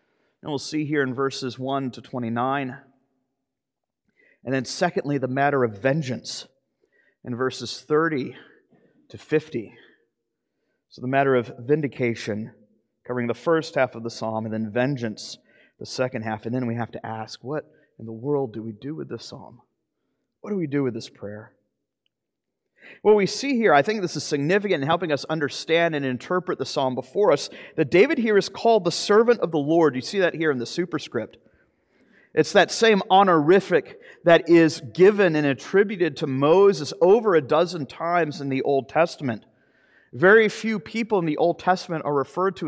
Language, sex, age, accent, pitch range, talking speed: English, male, 30-49, American, 130-170 Hz, 180 wpm